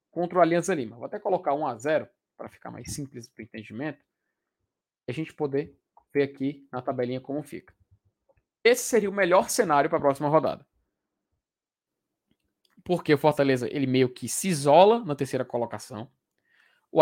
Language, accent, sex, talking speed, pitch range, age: Portuguese, Brazilian, male, 160 wpm, 145-195 Hz, 20-39